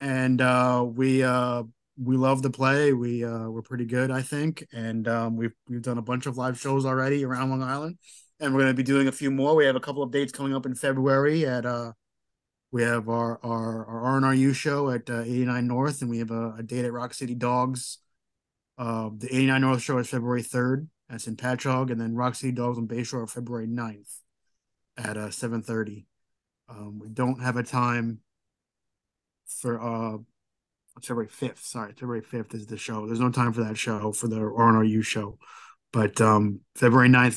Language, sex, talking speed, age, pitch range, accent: English, male, 200 wpm, 20-39, 115-130 Hz, American